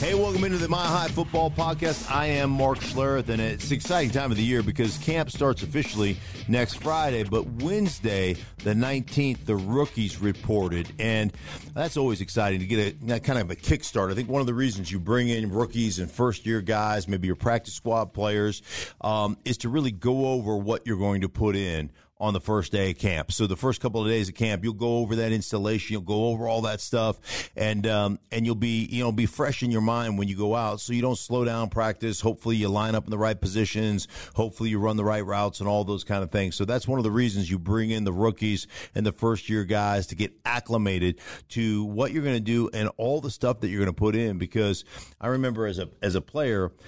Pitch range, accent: 100-120 Hz, American